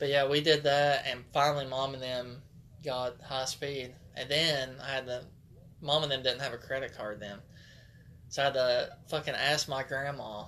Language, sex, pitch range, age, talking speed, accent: English, male, 120-145 Hz, 20-39, 200 wpm, American